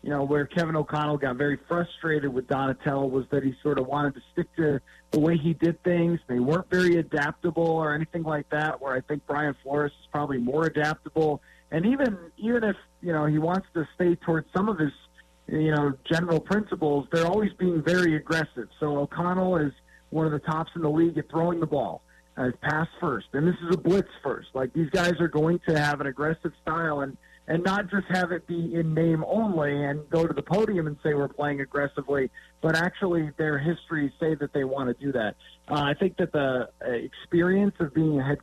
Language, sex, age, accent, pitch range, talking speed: English, male, 40-59, American, 145-175 Hz, 215 wpm